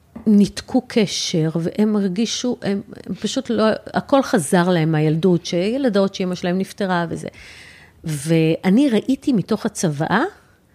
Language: Hebrew